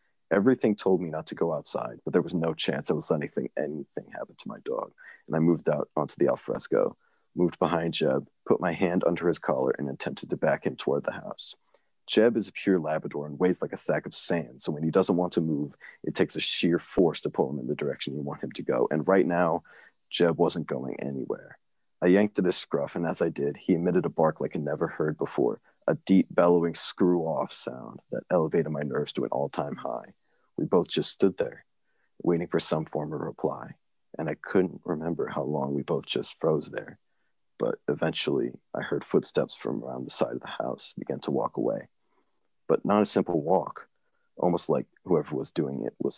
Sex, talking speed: male, 220 wpm